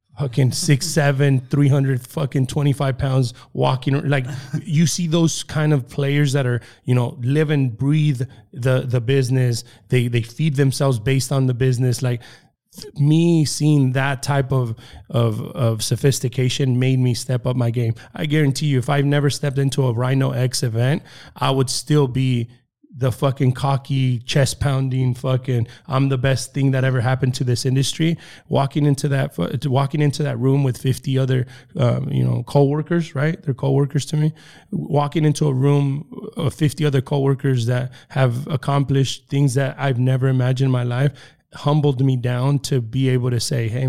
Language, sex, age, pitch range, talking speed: English, male, 20-39, 125-145 Hz, 175 wpm